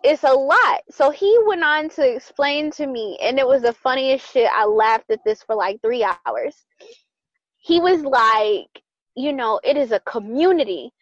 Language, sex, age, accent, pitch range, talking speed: English, female, 20-39, American, 260-350 Hz, 185 wpm